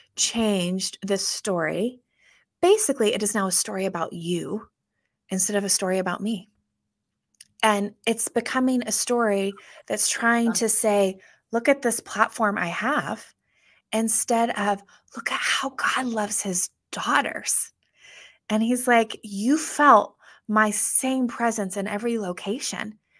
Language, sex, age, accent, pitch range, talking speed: English, female, 20-39, American, 215-290 Hz, 135 wpm